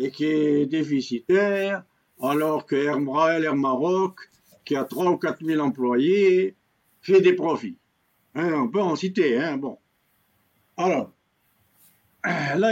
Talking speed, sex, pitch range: 135 wpm, male, 155-220 Hz